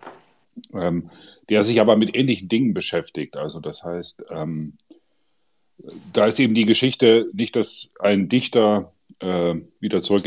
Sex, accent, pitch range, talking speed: male, German, 90-120 Hz, 140 wpm